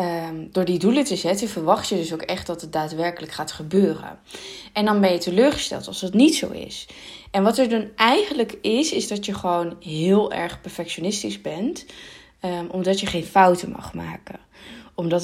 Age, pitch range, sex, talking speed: 20-39, 175-220 Hz, female, 180 wpm